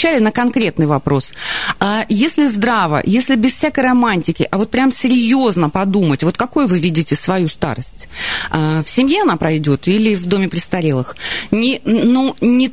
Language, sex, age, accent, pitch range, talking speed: Russian, female, 30-49, native, 160-225 Hz, 145 wpm